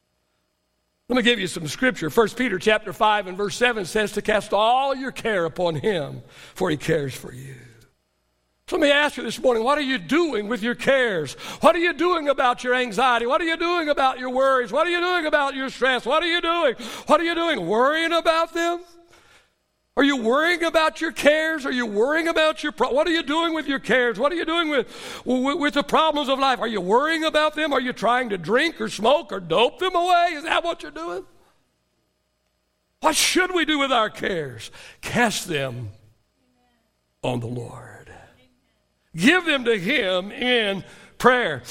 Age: 60-79